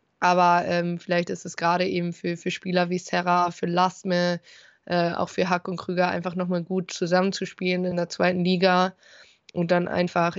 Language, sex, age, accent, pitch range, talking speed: German, female, 20-39, German, 170-180 Hz, 175 wpm